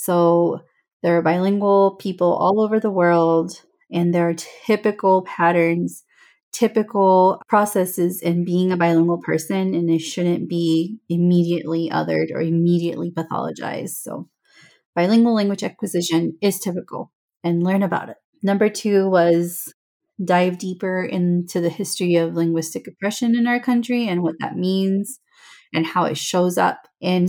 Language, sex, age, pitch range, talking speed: English, female, 30-49, 170-195 Hz, 140 wpm